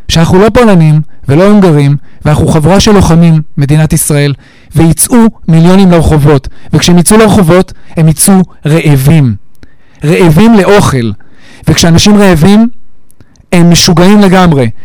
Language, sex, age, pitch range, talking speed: Hebrew, male, 40-59, 160-210 Hz, 110 wpm